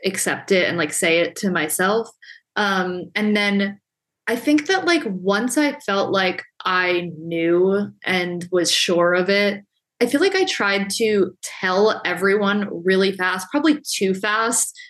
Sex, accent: female, American